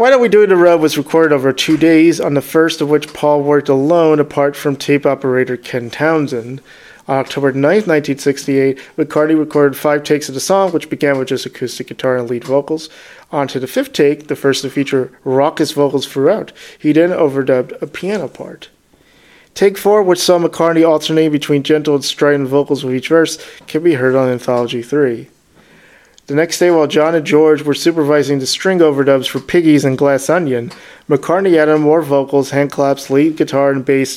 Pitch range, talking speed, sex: 135-160 Hz, 195 wpm, male